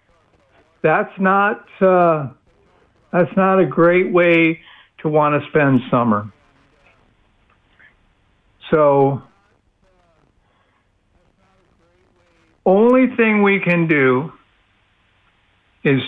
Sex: male